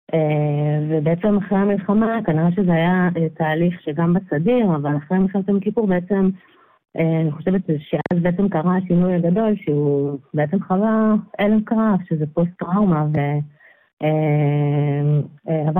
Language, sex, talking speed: Hebrew, female, 120 wpm